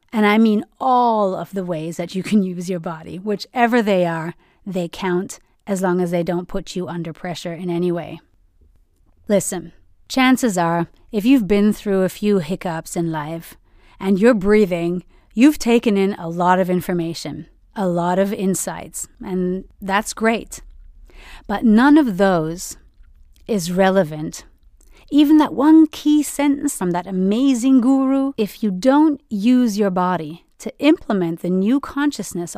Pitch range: 175-225 Hz